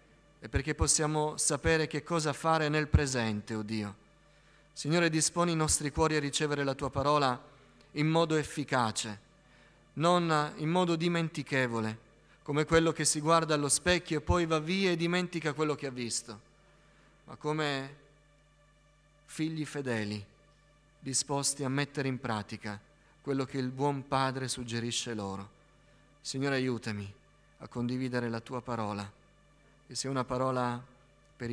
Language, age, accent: Italian, 30-49, native